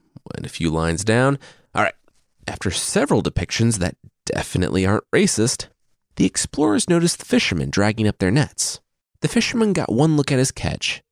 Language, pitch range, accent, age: English, 85-120 Hz, American, 30-49